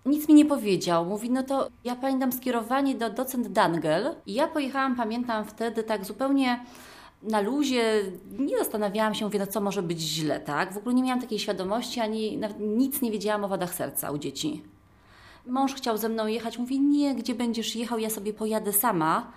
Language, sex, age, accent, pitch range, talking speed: Polish, female, 30-49, native, 200-240 Hz, 190 wpm